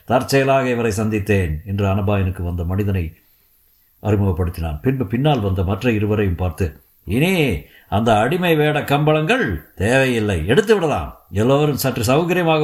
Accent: native